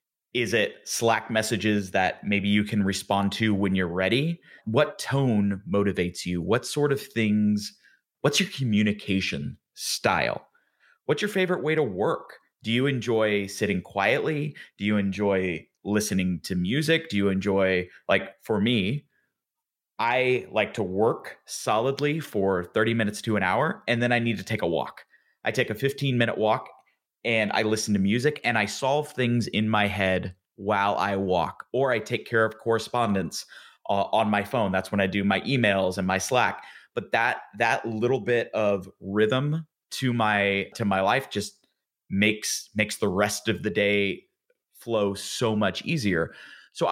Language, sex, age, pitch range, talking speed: English, male, 30-49, 100-125 Hz, 170 wpm